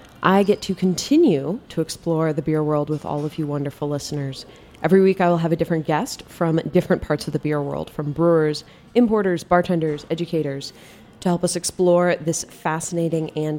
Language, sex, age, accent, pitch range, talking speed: English, female, 20-39, American, 155-190 Hz, 185 wpm